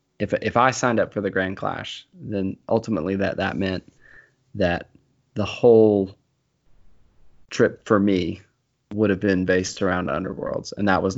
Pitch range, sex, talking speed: 95-105 Hz, male, 155 wpm